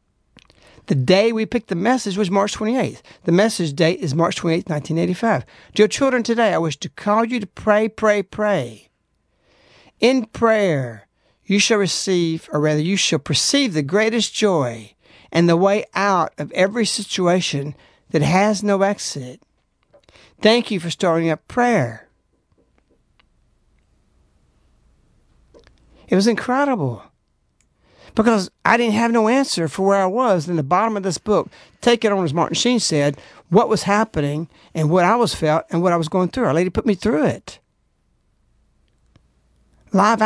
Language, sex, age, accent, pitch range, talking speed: English, male, 60-79, American, 155-215 Hz, 155 wpm